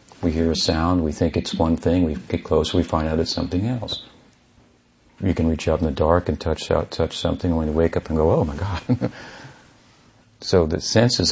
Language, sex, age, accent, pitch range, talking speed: English, male, 50-69, American, 80-95 Hz, 225 wpm